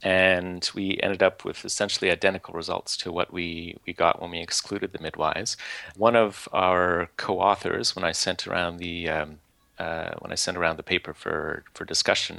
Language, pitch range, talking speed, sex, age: English, 85-95 Hz, 185 wpm, male, 30-49